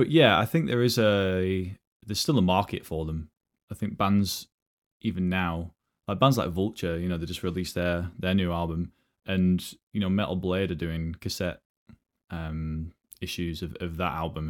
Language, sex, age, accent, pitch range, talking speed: English, male, 20-39, British, 85-100 Hz, 185 wpm